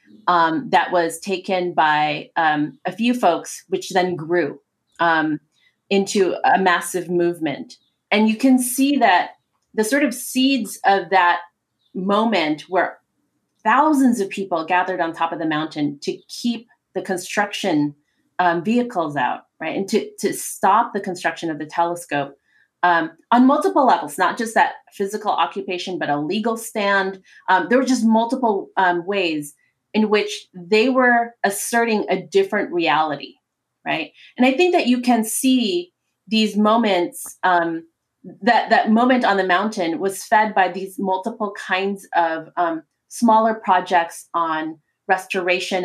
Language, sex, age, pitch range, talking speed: English, female, 30-49, 175-230 Hz, 150 wpm